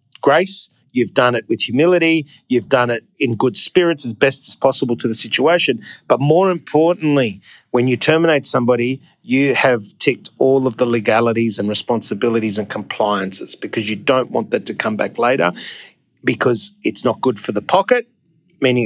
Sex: male